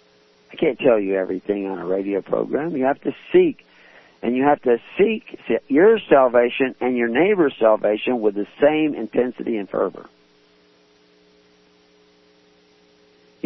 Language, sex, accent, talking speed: English, male, American, 135 wpm